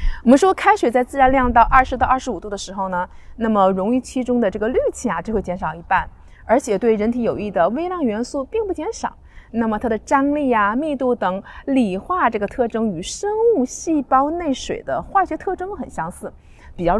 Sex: female